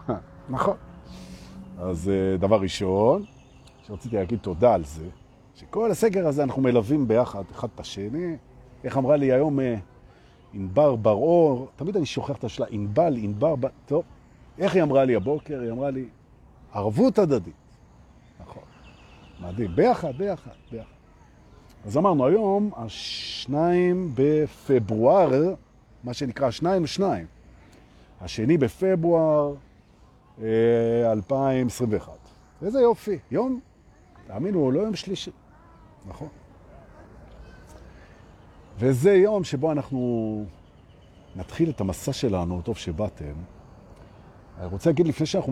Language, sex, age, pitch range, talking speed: Hebrew, male, 50-69, 100-155 Hz, 110 wpm